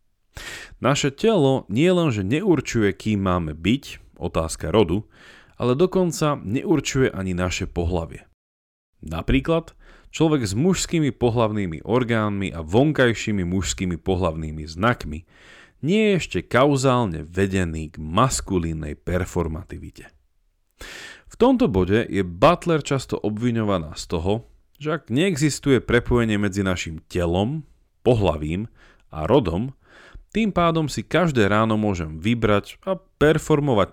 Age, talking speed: 30-49, 110 wpm